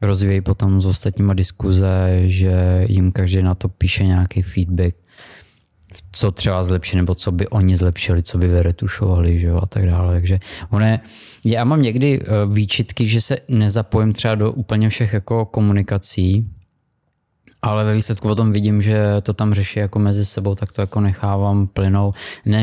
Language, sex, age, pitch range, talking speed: Czech, male, 20-39, 95-105 Hz, 160 wpm